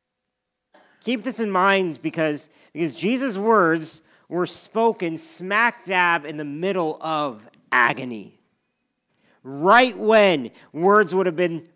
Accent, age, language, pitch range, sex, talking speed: American, 40-59, English, 165-215 Hz, male, 115 wpm